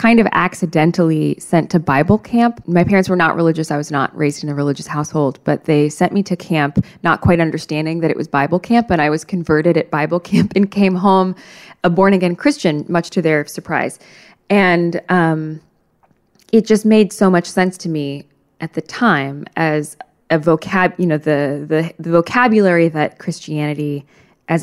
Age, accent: 20-39, American